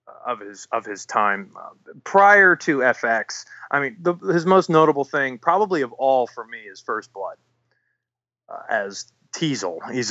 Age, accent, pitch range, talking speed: 30-49, American, 120-150 Hz, 165 wpm